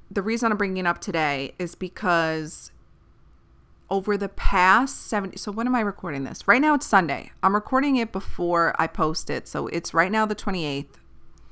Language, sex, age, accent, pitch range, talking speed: English, female, 30-49, American, 170-220 Hz, 190 wpm